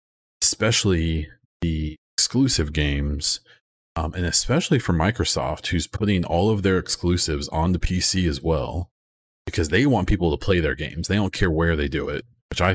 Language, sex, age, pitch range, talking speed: English, male, 30-49, 75-95 Hz, 175 wpm